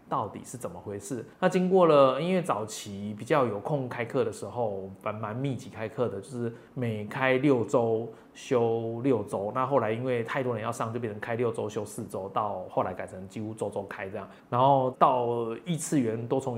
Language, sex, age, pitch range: Chinese, male, 20-39, 110-135 Hz